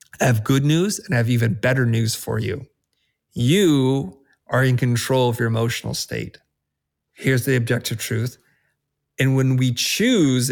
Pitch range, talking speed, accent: 115-145 Hz, 160 wpm, American